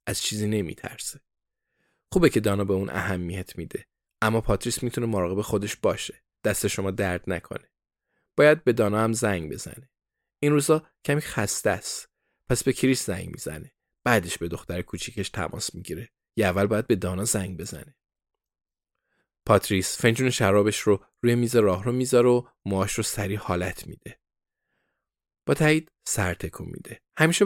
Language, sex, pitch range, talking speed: Persian, male, 95-120 Hz, 155 wpm